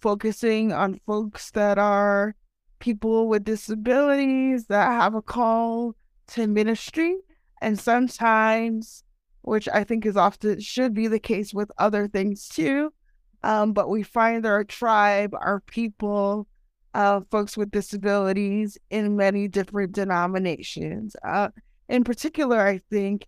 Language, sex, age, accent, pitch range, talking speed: English, female, 20-39, American, 200-235 Hz, 130 wpm